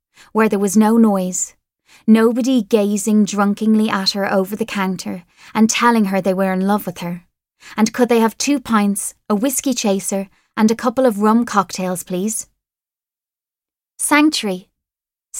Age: 20-39